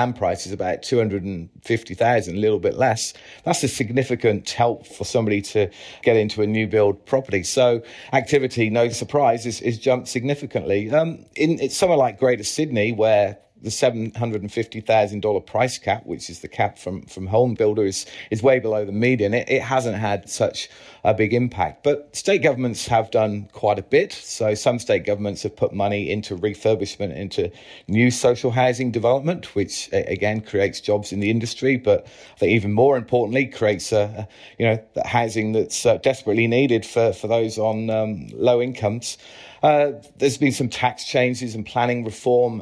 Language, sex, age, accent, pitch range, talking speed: English, male, 30-49, British, 105-125 Hz, 190 wpm